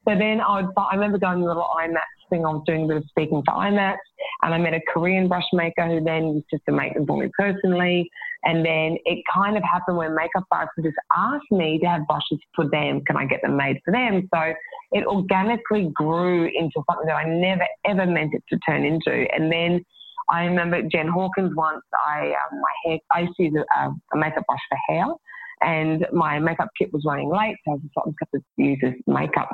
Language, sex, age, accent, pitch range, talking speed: English, female, 30-49, Australian, 160-190 Hz, 240 wpm